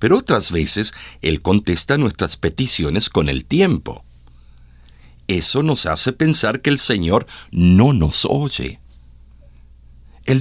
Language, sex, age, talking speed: Spanish, male, 60-79, 120 wpm